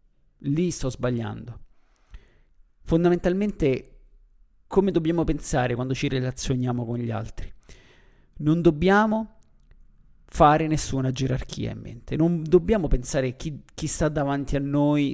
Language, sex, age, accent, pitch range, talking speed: Italian, male, 50-69, native, 120-155 Hz, 115 wpm